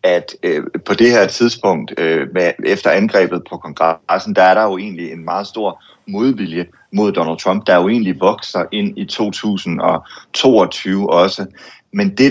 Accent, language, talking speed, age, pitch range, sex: native, Danish, 170 wpm, 30-49, 95-130 Hz, male